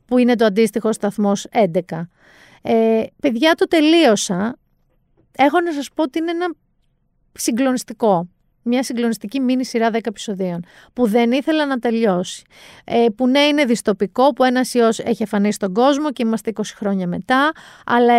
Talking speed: 155 wpm